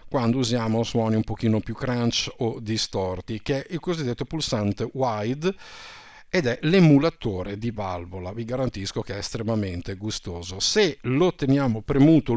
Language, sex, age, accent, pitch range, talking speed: Italian, male, 50-69, native, 105-135 Hz, 145 wpm